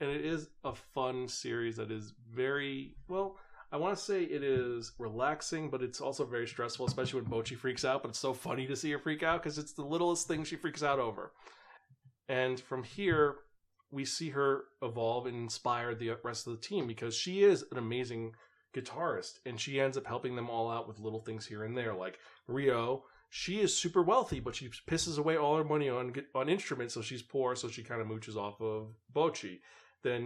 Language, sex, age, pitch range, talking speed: English, male, 30-49, 115-145 Hz, 210 wpm